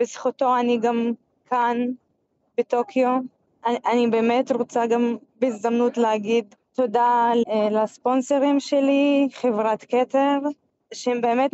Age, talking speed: 20-39, 100 wpm